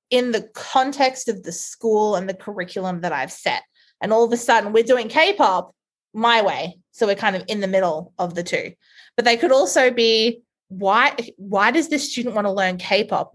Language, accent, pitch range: English, Australian, 190-245 Hz